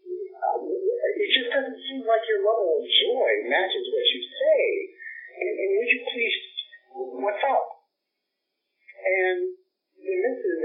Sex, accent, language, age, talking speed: male, American, English, 50-69, 135 wpm